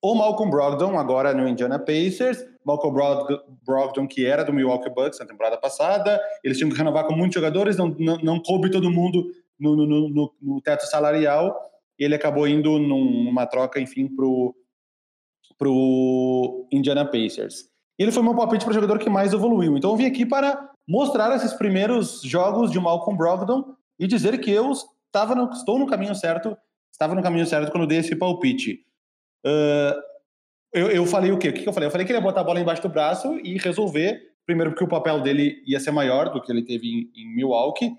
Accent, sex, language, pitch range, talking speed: Brazilian, male, Portuguese, 145-220 Hz, 200 wpm